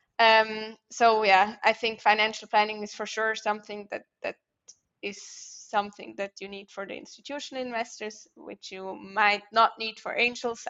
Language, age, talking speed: English, 20-39, 165 wpm